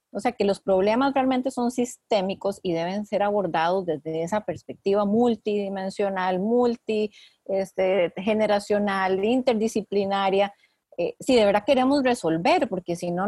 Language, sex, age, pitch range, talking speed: Spanish, female, 30-49, 190-250 Hz, 120 wpm